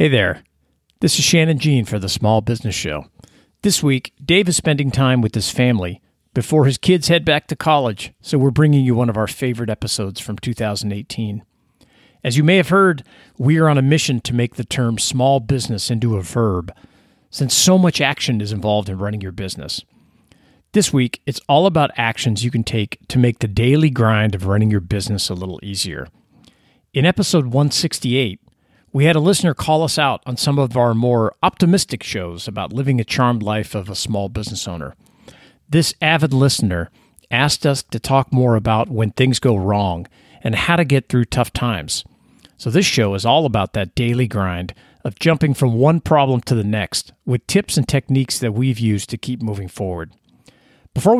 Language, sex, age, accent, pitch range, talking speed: English, male, 40-59, American, 105-145 Hz, 190 wpm